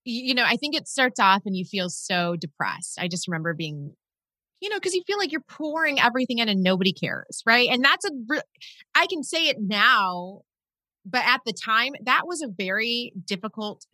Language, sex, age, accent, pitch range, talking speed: English, female, 30-49, American, 170-235 Hz, 200 wpm